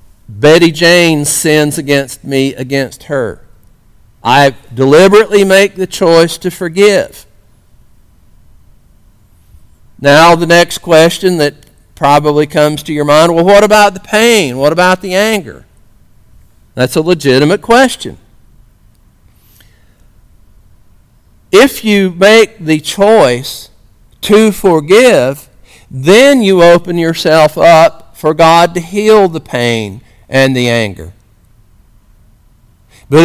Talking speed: 105 wpm